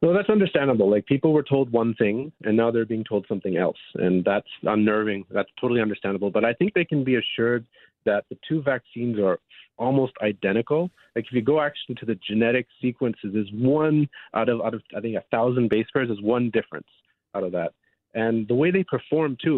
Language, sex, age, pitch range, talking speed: English, male, 40-59, 115-135 Hz, 210 wpm